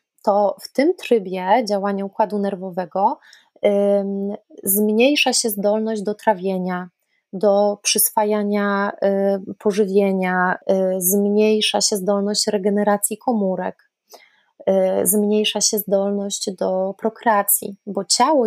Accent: native